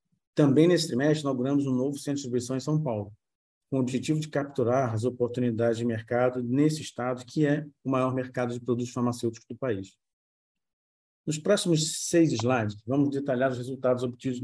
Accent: Brazilian